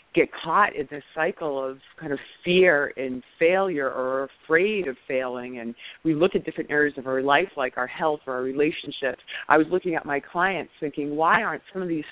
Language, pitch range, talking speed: English, 145-180 Hz, 210 wpm